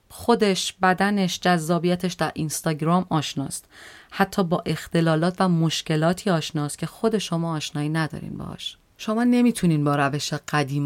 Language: Persian